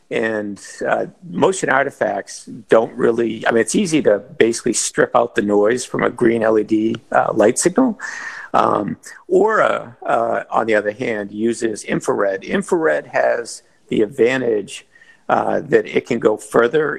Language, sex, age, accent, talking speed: English, male, 50-69, American, 150 wpm